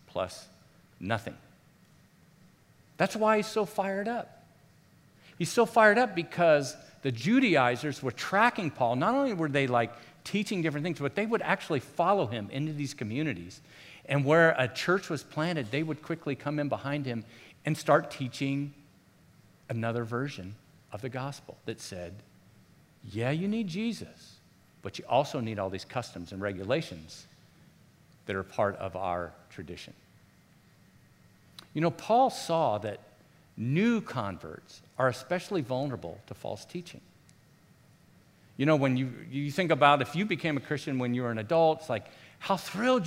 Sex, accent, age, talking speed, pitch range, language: male, American, 50-69, 155 wpm, 130-175 Hz, English